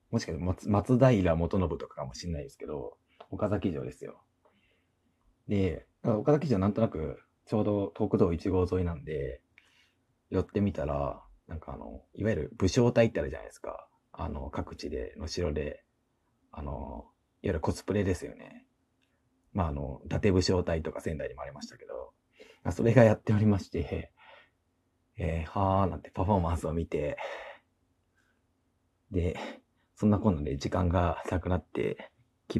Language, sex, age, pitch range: Japanese, male, 40-59, 80-105 Hz